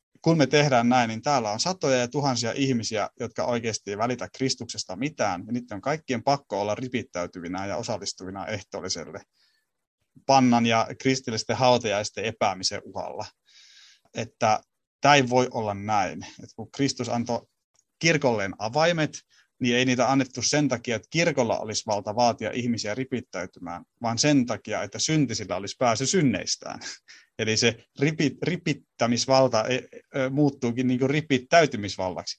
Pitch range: 110-140 Hz